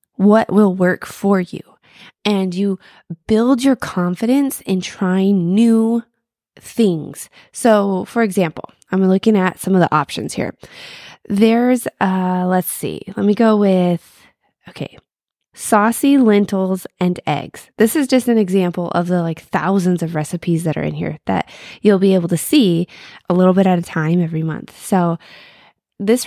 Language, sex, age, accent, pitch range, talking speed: English, female, 20-39, American, 175-220 Hz, 160 wpm